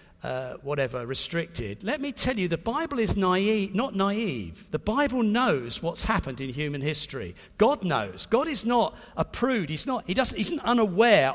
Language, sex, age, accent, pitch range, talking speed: English, male, 50-69, British, 165-220 Hz, 185 wpm